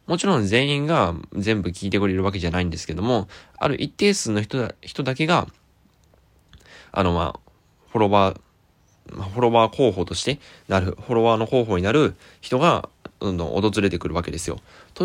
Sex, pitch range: male, 90-130 Hz